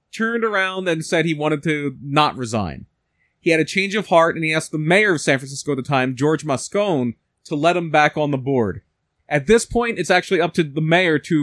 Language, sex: English, male